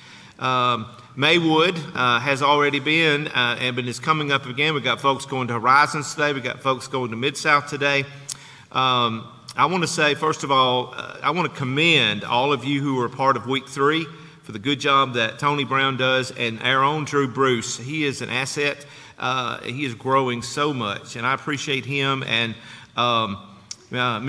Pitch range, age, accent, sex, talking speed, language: 125-150 Hz, 50-69, American, male, 190 wpm, English